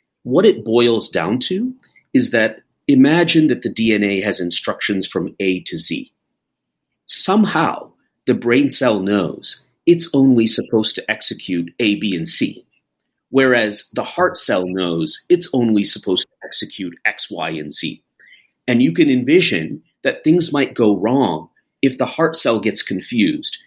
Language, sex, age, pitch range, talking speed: English, male, 40-59, 95-150 Hz, 150 wpm